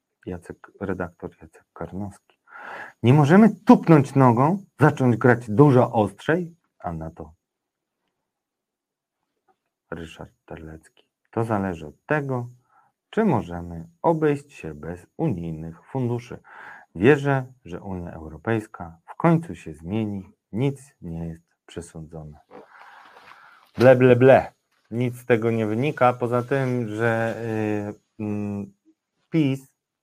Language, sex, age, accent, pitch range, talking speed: Polish, male, 40-59, native, 90-115 Hz, 105 wpm